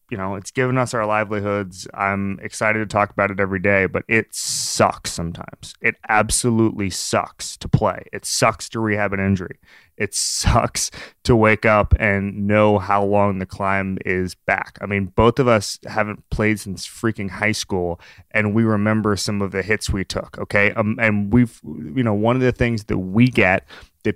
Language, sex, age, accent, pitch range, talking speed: English, male, 20-39, American, 100-120 Hz, 190 wpm